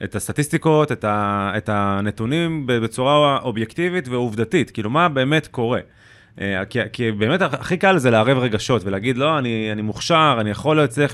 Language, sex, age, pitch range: Hebrew, male, 20-39, 110-160 Hz